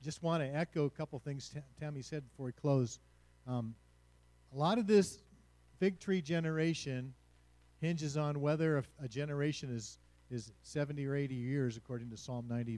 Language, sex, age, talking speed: English, male, 50-69, 170 wpm